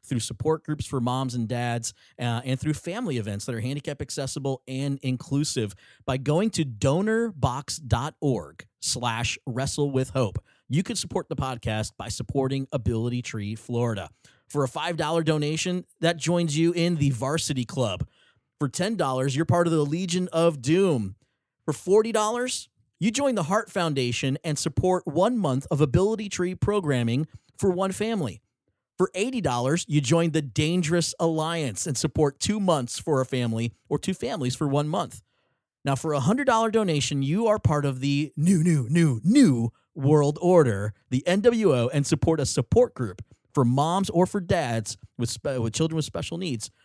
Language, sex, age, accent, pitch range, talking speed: English, male, 30-49, American, 125-175 Hz, 165 wpm